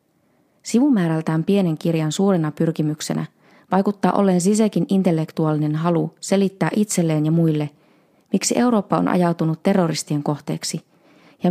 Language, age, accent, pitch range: Finnish, 20-39, native, 160-200 Hz